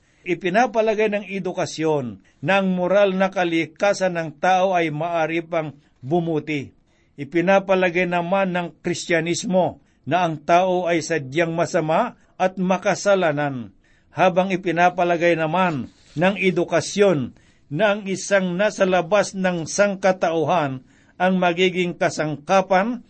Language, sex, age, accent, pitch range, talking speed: Filipino, male, 60-79, native, 160-190 Hz, 105 wpm